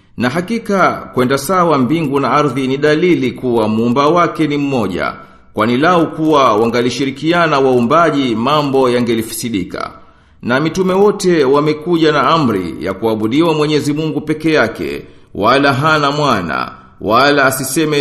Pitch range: 120-160 Hz